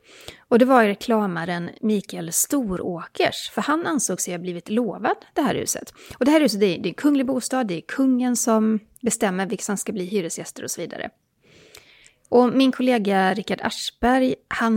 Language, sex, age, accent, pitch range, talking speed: Swedish, female, 30-49, native, 185-245 Hz, 180 wpm